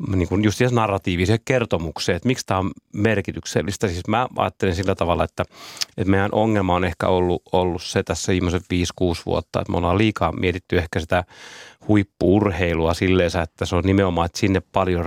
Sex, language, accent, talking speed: male, Finnish, native, 170 wpm